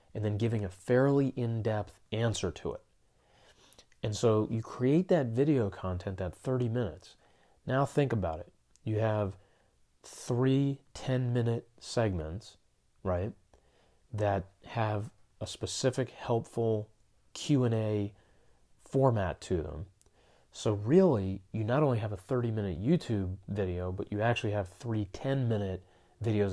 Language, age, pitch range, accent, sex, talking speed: English, 30-49, 95-120 Hz, American, male, 125 wpm